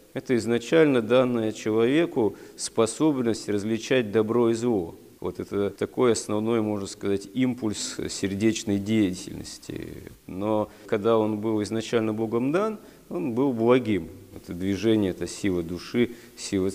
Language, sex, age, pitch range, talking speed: Russian, male, 40-59, 100-115 Hz, 120 wpm